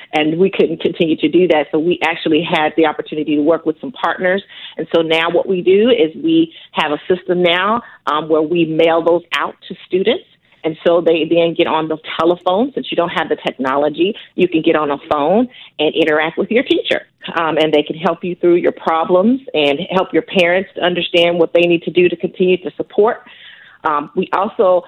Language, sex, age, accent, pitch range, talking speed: English, female, 40-59, American, 155-180 Hz, 215 wpm